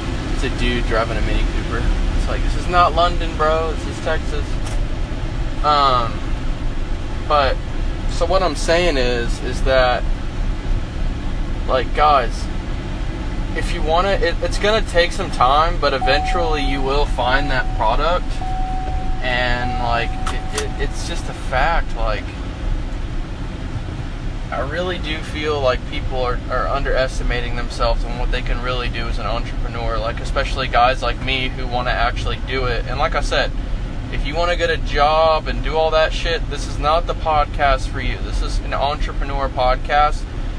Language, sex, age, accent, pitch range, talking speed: English, male, 20-39, American, 105-135 Hz, 160 wpm